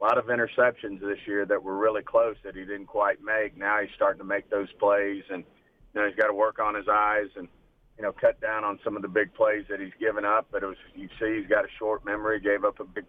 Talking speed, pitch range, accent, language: 270 wpm, 100-110 Hz, American, English